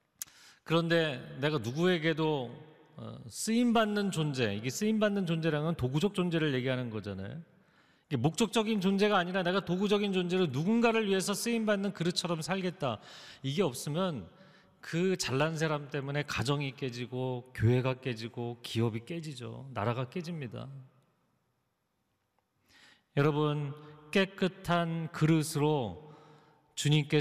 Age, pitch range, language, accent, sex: 40-59, 130-190 Hz, Korean, native, male